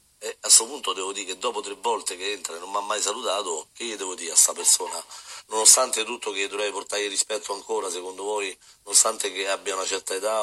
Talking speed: 235 wpm